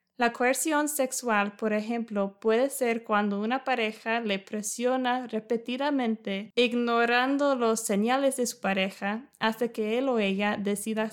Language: English